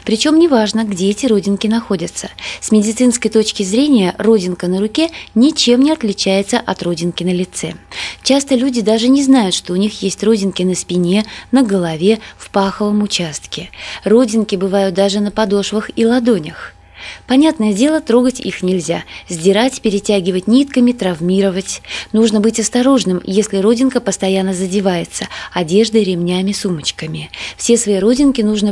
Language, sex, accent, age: Russian, female, native, 20-39